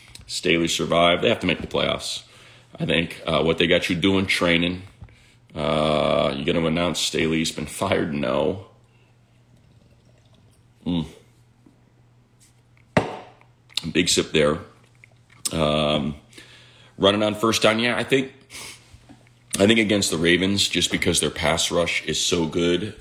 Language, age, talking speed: English, 30-49, 135 wpm